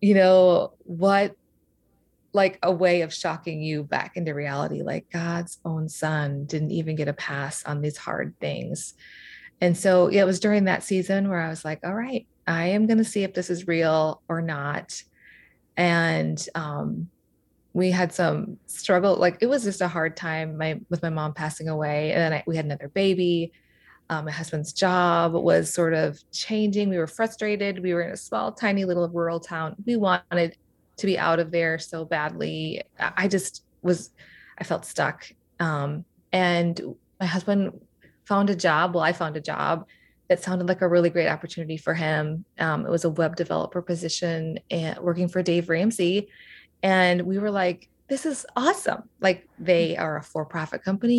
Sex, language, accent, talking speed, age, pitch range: female, English, American, 185 wpm, 20-39, 160-190 Hz